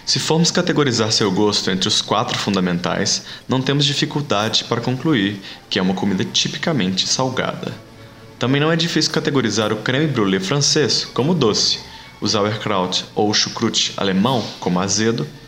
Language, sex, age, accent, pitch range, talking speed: English, male, 20-39, Brazilian, 105-145 Hz, 145 wpm